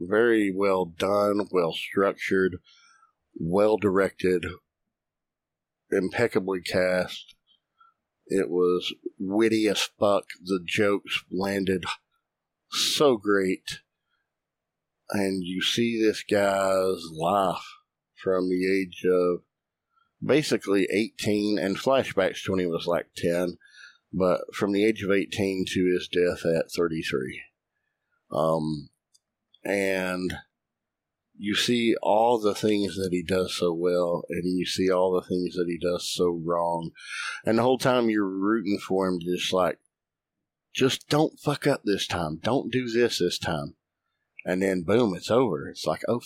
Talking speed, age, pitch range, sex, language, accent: 130 wpm, 50-69, 90-105 Hz, male, English, American